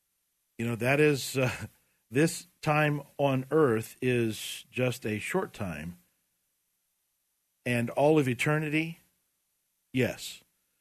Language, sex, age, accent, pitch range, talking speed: English, male, 50-69, American, 110-145 Hz, 105 wpm